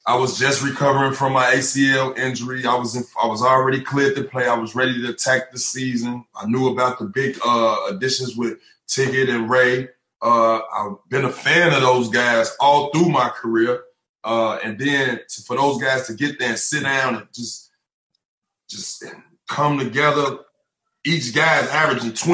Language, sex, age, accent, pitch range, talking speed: English, male, 20-39, American, 130-170 Hz, 185 wpm